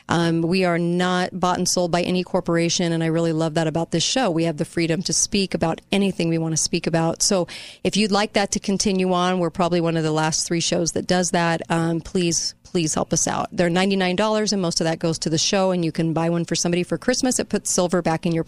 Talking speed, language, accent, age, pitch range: 265 wpm, English, American, 40-59, 165-190 Hz